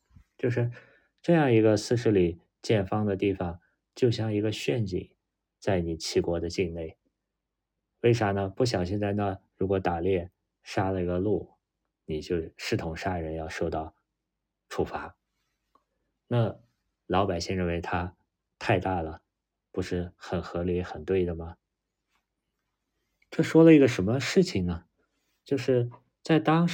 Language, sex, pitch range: Chinese, male, 90-115 Hz